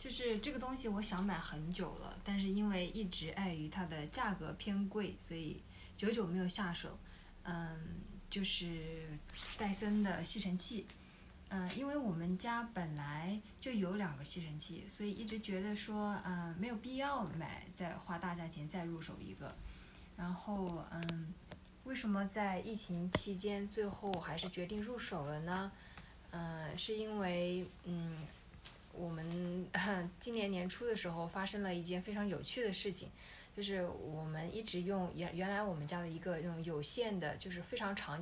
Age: 20-39